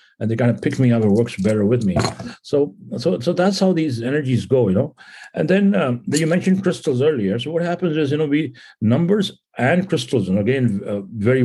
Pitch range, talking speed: 110-140 Hz, 225 wpm